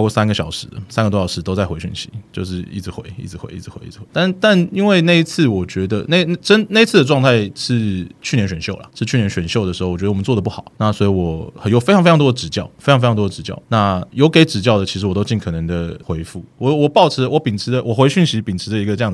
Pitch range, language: 100-145 Hz, Chinese